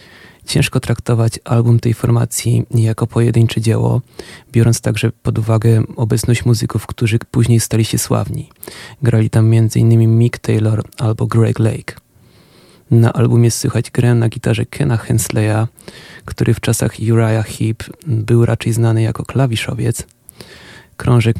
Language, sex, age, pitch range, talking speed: Polish, male, 30-49, 105-120 Hz, 130 wpm